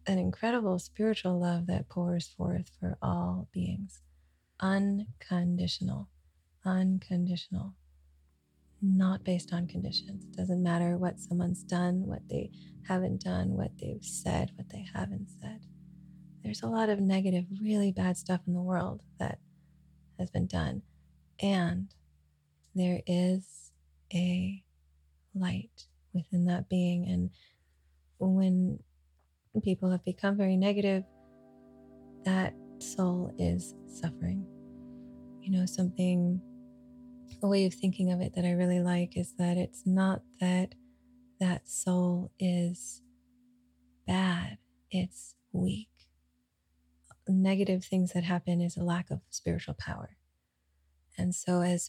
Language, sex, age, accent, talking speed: English, female, 30-49, American, 120 wpm